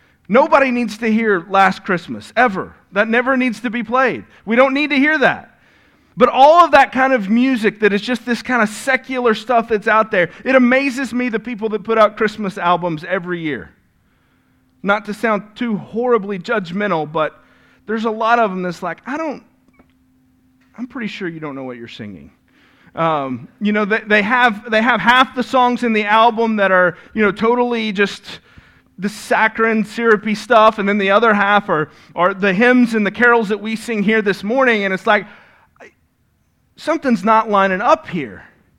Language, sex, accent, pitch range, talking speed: English, male, American, 195-240 Hz, 190 wpm